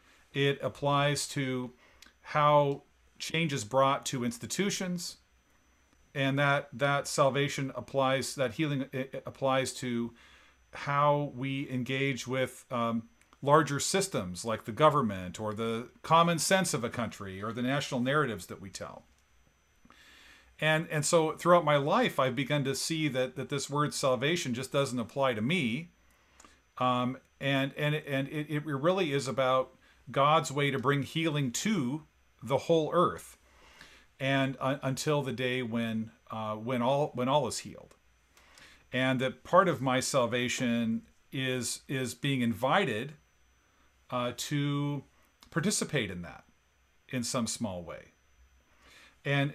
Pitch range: 120-145 Hz